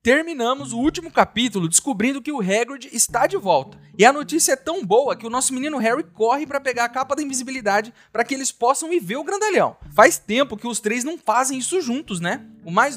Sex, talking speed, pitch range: male, 225 wpm, 210-290 Hz